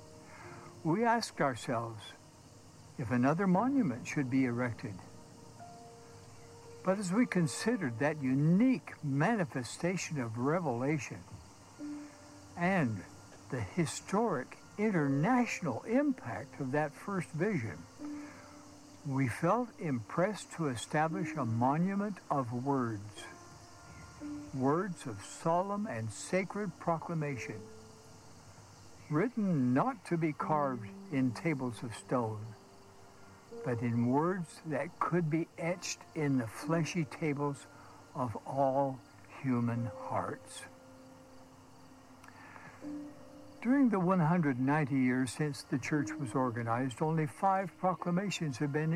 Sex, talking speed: male, 100 wpm